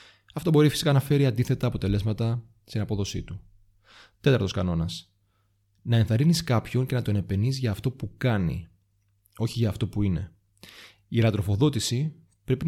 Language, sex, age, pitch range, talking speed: Greek, male, 30-49, 100-135 Hz, 145 wpm